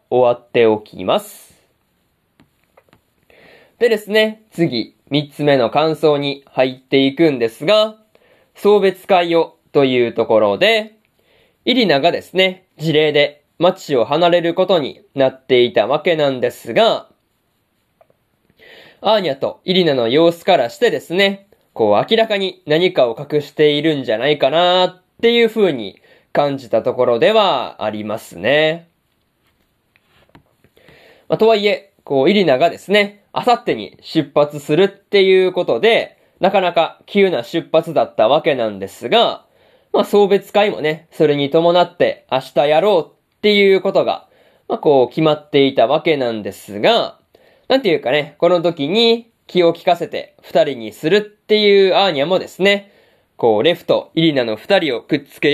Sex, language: male, Japanese